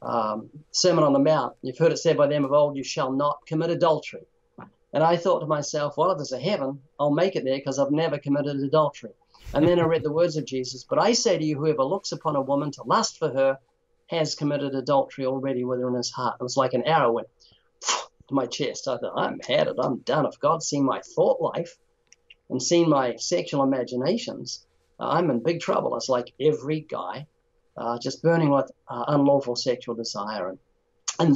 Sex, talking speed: male, 215 wpm